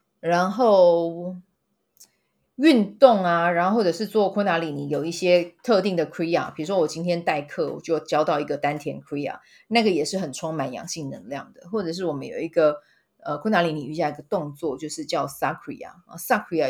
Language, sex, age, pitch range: Chinese, female, 30-49, 150-190 Hz